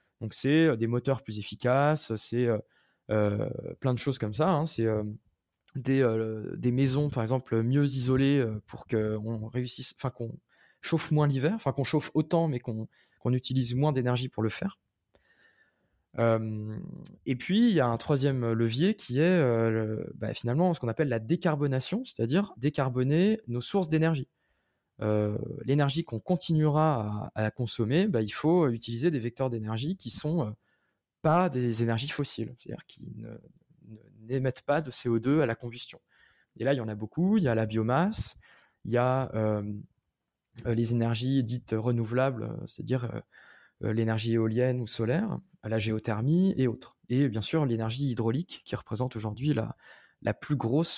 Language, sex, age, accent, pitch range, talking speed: French, male, 20-39, French, 115-150 Hz, 160 wpm